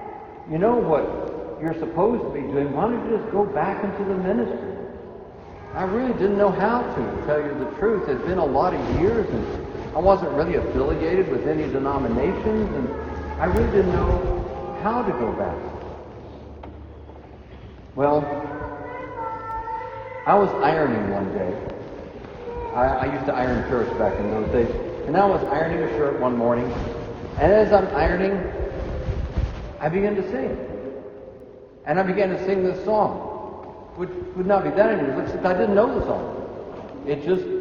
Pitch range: 140-205 Hz